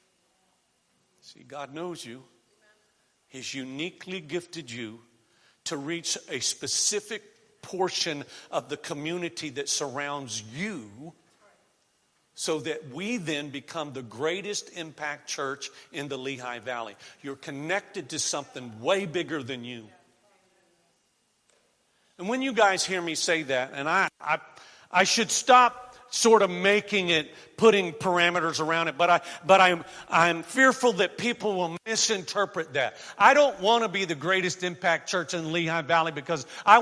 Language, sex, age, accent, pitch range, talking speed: English, male, 50-69, American, 155-220 Hz, 140 wpm